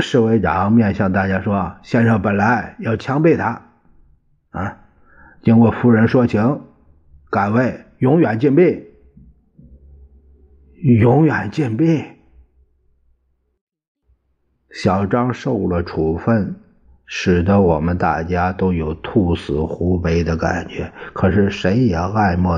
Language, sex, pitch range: Chinese, male, 85-115 Hz